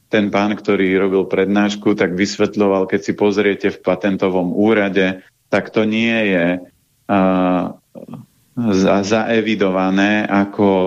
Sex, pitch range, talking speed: male, 95-110 Hz, 115 wpm